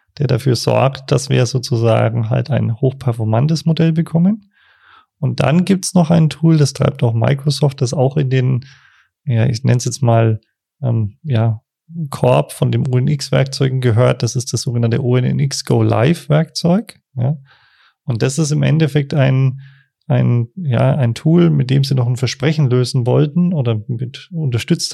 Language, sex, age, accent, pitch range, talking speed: German, male, 30-49, German, 125-150 Hz, 170 wpm